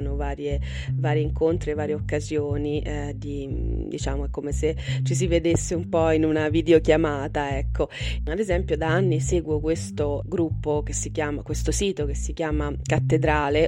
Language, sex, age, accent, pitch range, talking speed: Italian, female, 20-39, native, 110-155 Hz, 160 wpm